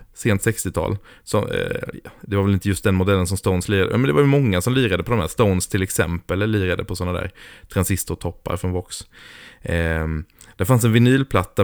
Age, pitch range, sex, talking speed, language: 20-39, 90-110 Hz, male, 210 wpm, Swedish